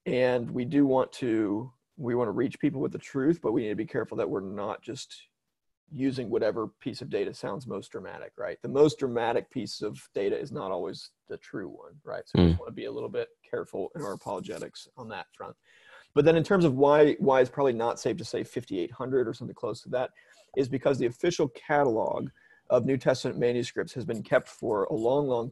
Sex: male